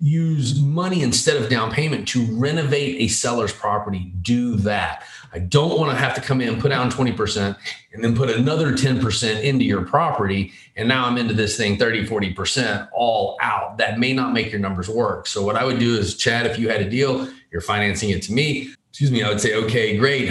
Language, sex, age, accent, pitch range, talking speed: English, male, 30-49, American, 105-140 Hz, 220 wpm